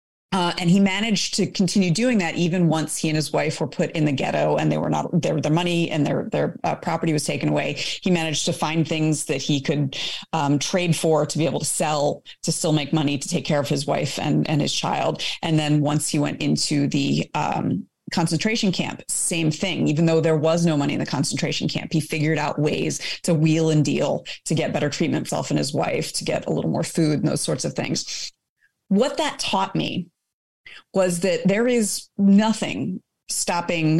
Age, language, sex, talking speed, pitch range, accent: 30-49, English, female, 215 wpm, 155-190 Hz, American